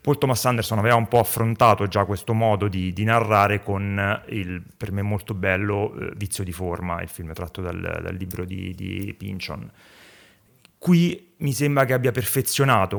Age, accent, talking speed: 30-49, native, 170 wpm